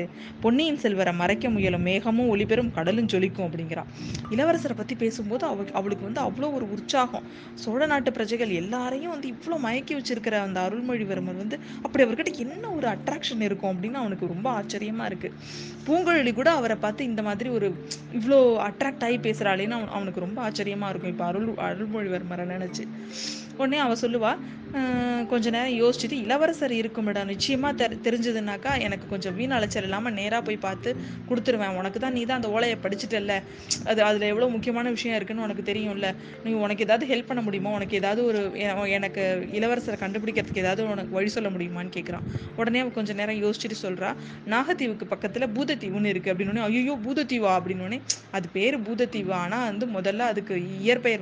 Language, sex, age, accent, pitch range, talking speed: Tamil, female, 20-39, native, 195-245 Hz, 35 wpm